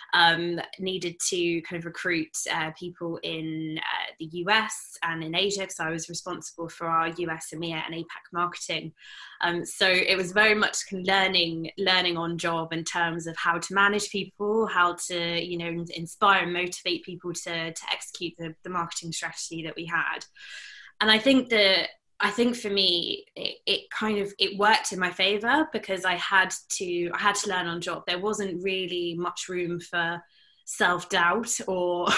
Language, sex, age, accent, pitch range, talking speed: English, female, 20-39, British, 165-190 Hz, 180 wpm